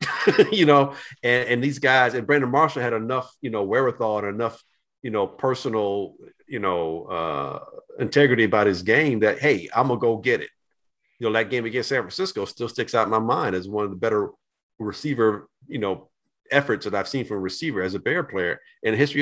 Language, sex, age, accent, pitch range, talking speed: English, male, 50-69, American, 105-140 Hz, 215 wpm